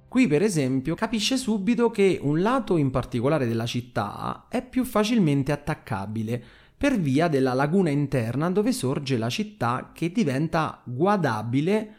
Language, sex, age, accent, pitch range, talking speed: Italian, male, 30-49, native, 115-190 Hz, 140 wpm